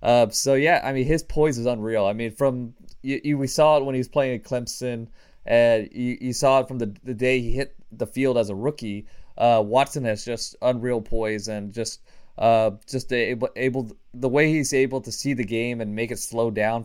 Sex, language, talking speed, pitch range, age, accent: male, English, 225 wpm, 110-130 Hz, 20-39, American